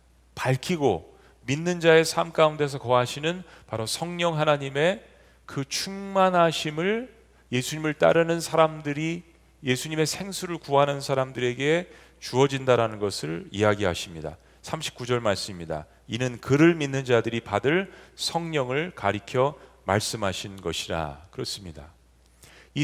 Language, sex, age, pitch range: Korean, male, 40-59, 110-160 Hz